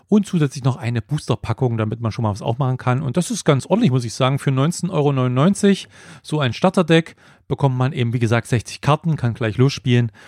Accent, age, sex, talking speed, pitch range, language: German, 40-59, male, 210 wpm, 110-135 Hz, German